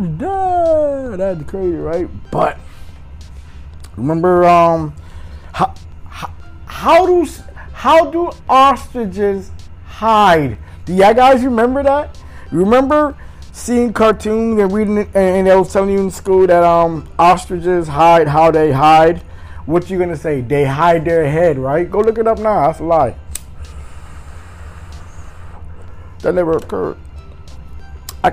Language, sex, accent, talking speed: English, male, American, 130 wpm